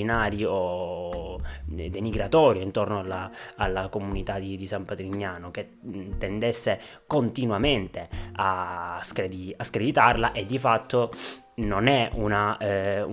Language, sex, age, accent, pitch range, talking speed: Italian, male, 20-39, native, 95-110 Hz, 110 wpm